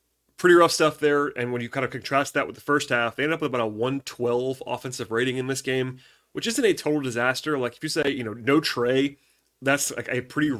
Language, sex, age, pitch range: English, male, 30-49, 120-155 Hz